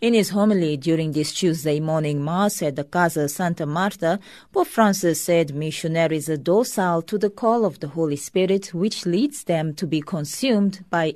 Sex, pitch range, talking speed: female, 145-190 Hz, 175 wpm